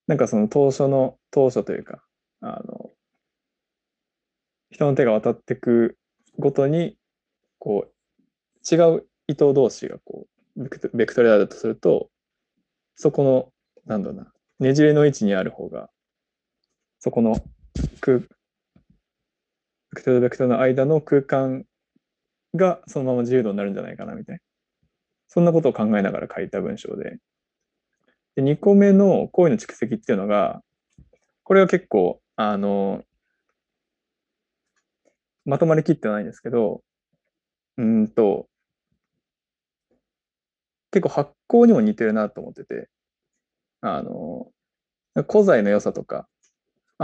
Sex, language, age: male, Japanese, 20-39